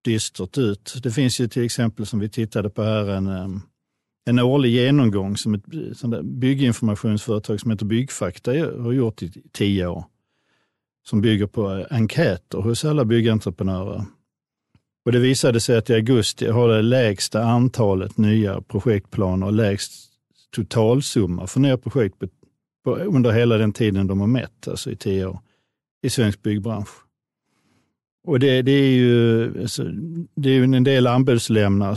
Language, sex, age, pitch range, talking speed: Swedish, male, 50-69, 105-125 Hz, 145 wpm